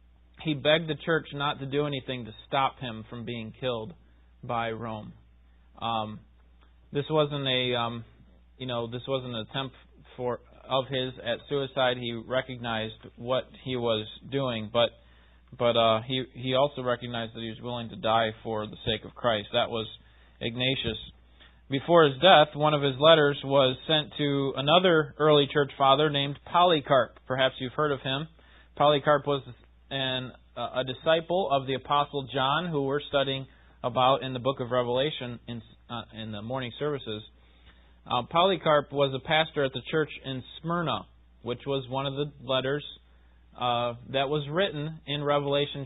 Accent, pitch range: American, 110-145 Hz